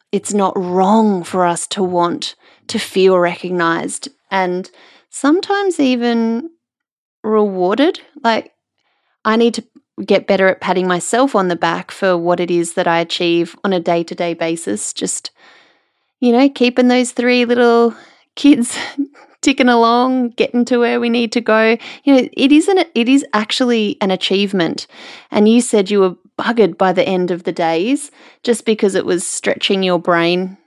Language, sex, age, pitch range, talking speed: English, female, 20-39, 185-245 Hz, 160 wpm